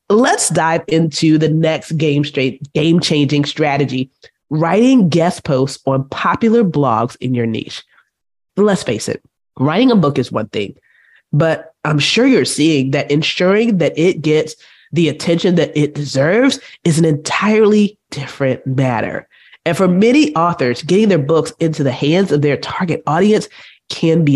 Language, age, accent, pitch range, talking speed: English, 20-39, American, 145-205 Hz, 160 wpm